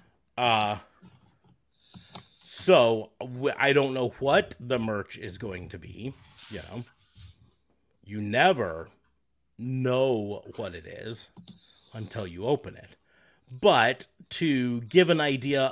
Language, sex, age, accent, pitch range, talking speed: English, male, 40-59, American, 100-125 Hz, 110 wpm